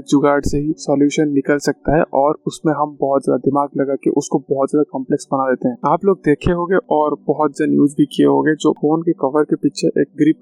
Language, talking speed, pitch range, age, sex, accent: Hindi, 235 wpm, 140-165 Hz, 20-39, male, native